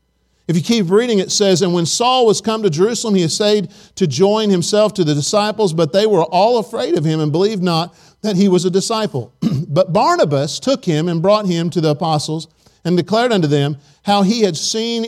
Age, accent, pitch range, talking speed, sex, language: 50-69, American, 160-215 Hz, 215 wpm, male, English